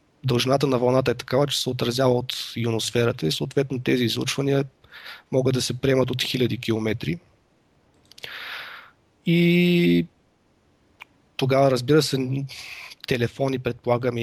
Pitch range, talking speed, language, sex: 115-135 Hz, 115 wpm, Bulgarian, male